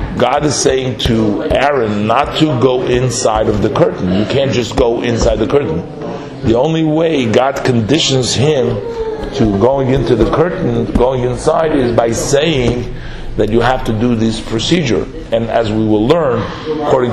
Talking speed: 170 wpm